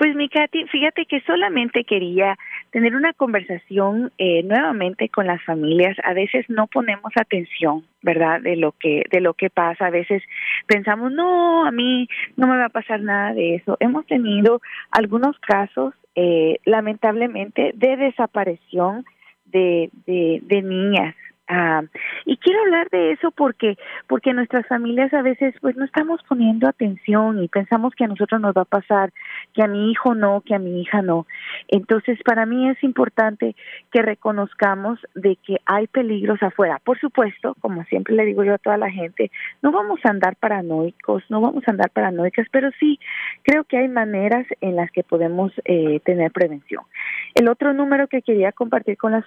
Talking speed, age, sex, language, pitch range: 175 wpm, 30-49, female, Spanish, 185-250 Hz